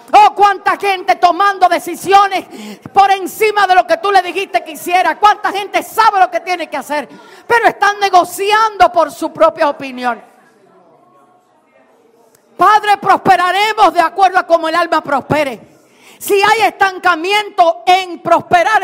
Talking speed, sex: 140 wpm, female